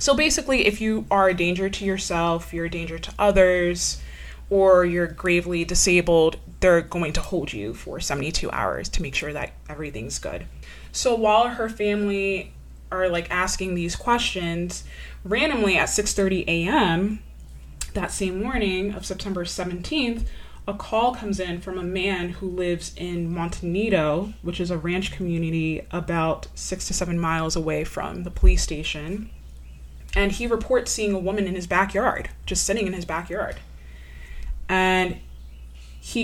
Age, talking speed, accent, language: 20-39, 155 wpm, American, English